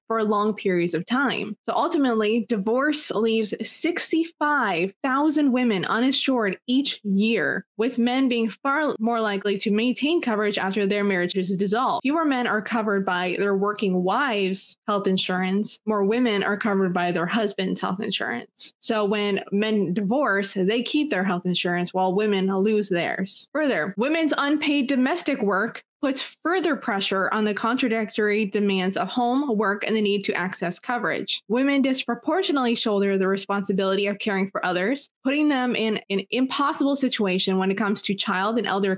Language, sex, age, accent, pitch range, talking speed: English, female, 20-39, American, 200-255 Hz, 155 wpm